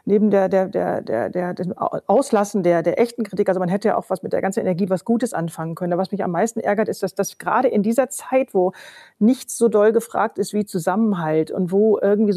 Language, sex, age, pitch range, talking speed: German, female, 40-59, 190-230 Hz, 240 wpm